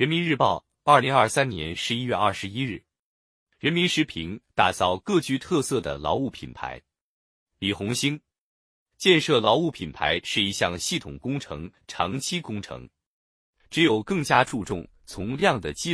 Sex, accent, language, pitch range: male, native, Chinese, 100-150 Hz